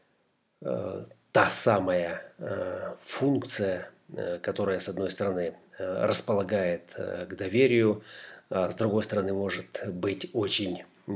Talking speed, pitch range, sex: 90 wpm, 95-110 Hz, male